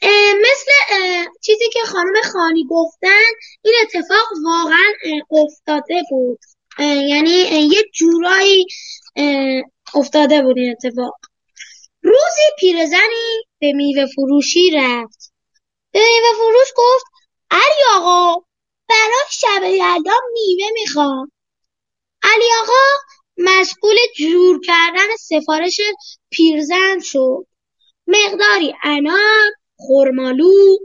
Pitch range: 300-420 Hz